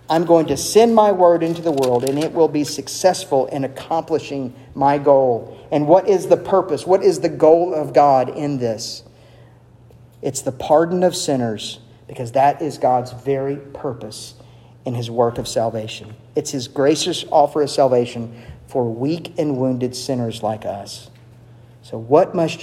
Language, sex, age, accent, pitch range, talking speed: English, male, 50-69, American, 120-155 Hz, 165 wpm